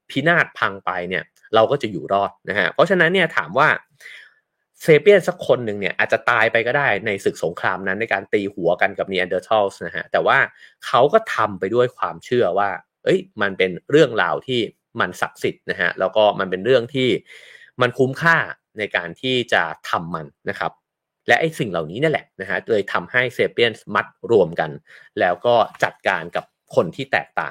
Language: English